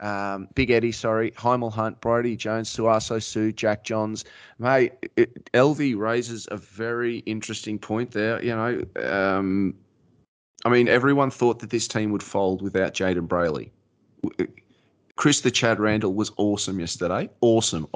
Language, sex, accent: English, male, Australian